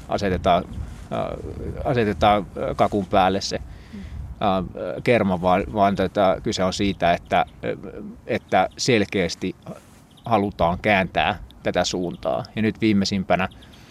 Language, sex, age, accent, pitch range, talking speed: Finnish, male, 20-39, native, 85-105 Hz, 90 wpm